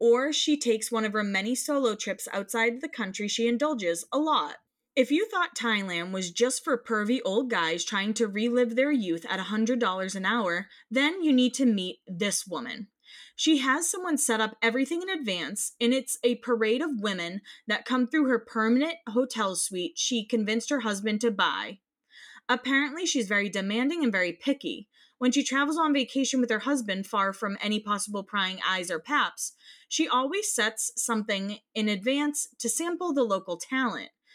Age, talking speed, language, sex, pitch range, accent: 20-39, 180 wpm, English, female, 205-275 Hz, American